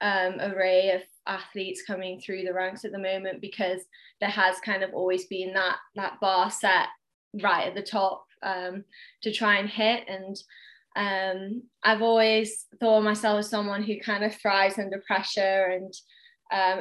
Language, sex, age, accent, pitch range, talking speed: English, female, 20-39, British, 190-210 Hz, 170 wpm